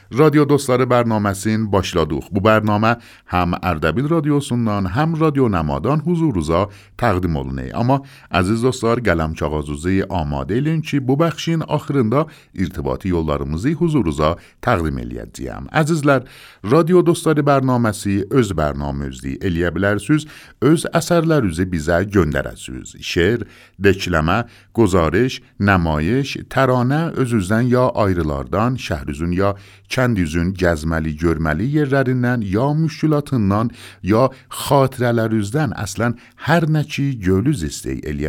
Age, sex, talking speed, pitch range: 50-69, male, 110 wpm, 85-135 Hz